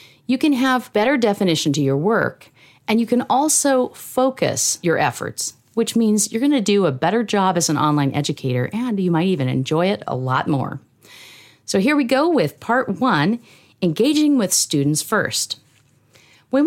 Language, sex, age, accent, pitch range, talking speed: English, female, 40-59, American, 150-225 Hz, 175 wpm